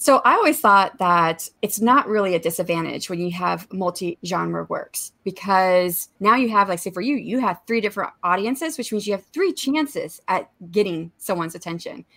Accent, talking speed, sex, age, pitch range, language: American, 185 wpm, female, 30-49, 180-230 Hz, English